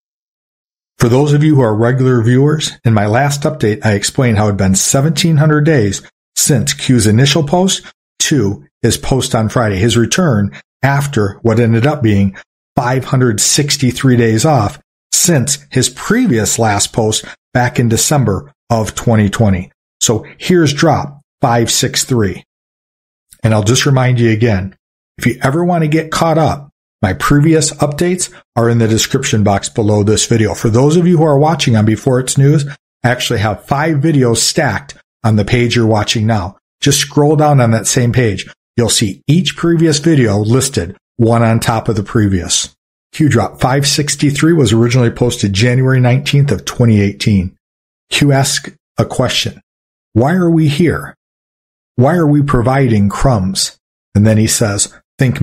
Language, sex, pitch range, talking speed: English, male, 110-145 Hz, 160 wpm